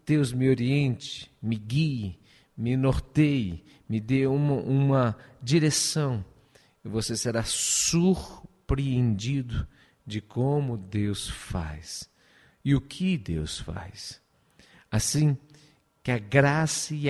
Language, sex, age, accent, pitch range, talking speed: Portuguese, male, 50-69, Brazilian, 105-135 Hz, 100 wpm